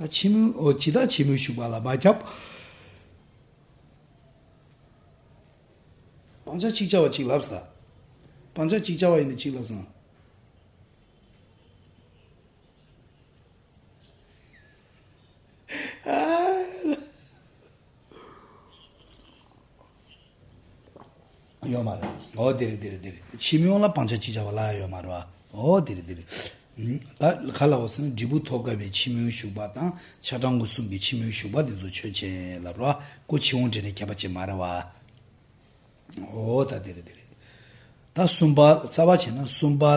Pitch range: 105-150 Hz